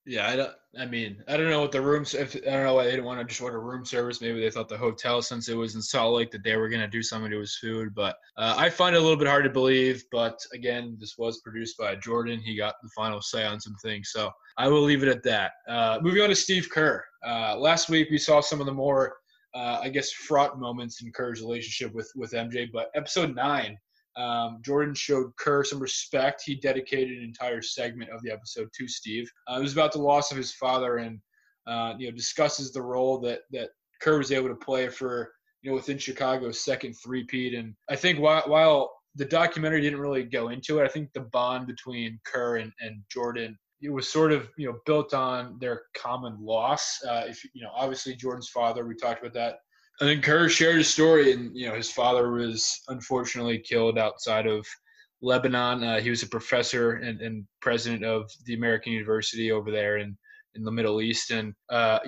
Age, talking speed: 20-39, 225 wpm